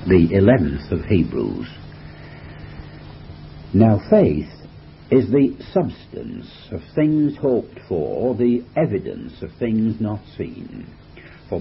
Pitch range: 95-145 Hz